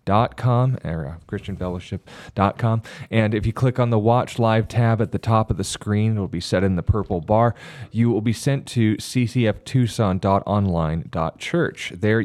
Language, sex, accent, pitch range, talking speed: English, male, American, 95-115 Hz, 150 wpm